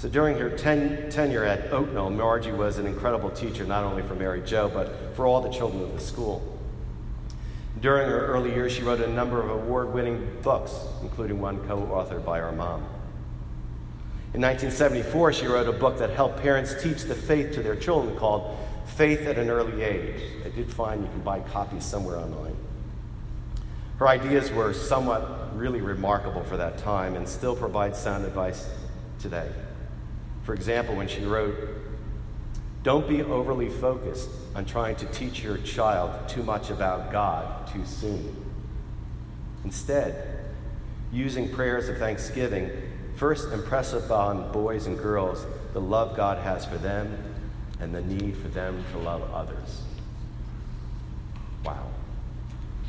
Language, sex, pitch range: English, male, 100-125 Hz